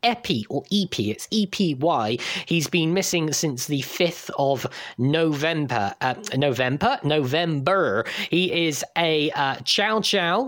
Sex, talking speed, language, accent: male, 125 wpm, English, British